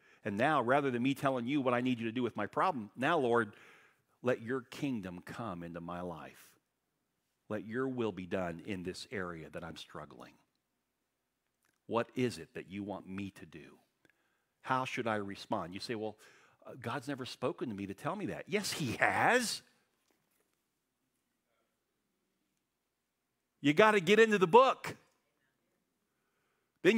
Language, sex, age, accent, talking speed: English, male, 50-69, American, 160 wpm